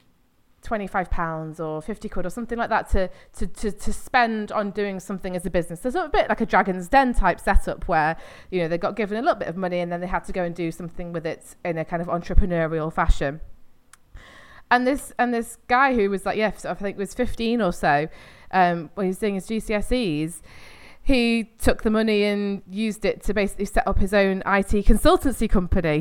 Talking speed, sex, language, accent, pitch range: 230 wpm, female, English, British, 175-220 Hz